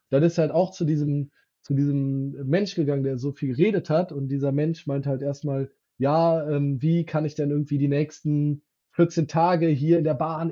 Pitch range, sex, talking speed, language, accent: 140-170 Hz, male, 210 wpm, German, German